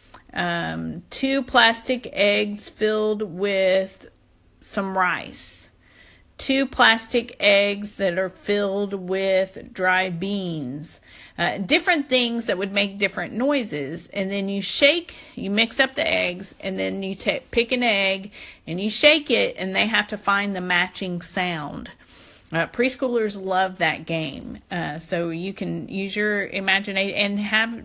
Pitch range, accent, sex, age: 180-230 Hz, American, female, 40-59